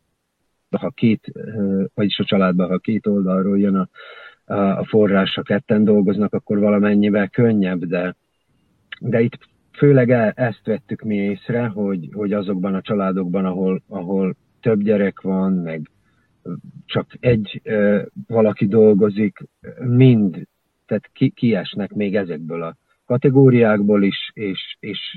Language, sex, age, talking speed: Hungarian, male, 50-69, 120 wpm